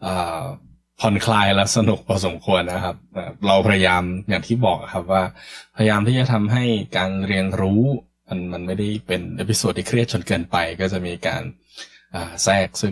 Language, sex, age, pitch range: Thai, male, 20-39, 90-115 Hz